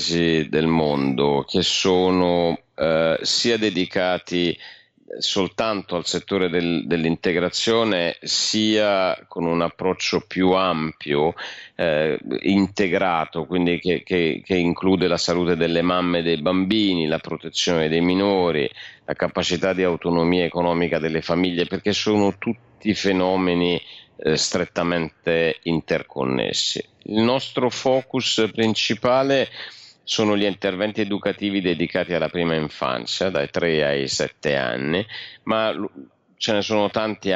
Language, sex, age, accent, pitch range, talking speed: Italian, male, 50-69, native, 80-100 Hz, 110 wpm